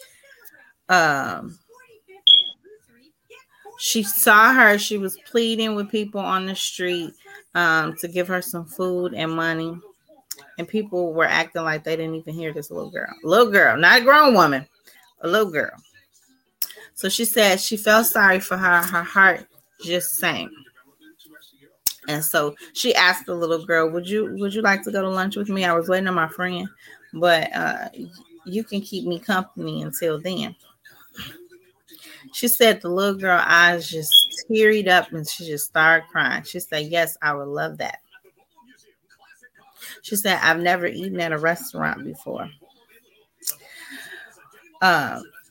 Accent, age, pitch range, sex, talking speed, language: American, 30-49, 170-230 Hz, female, 155 wpm, English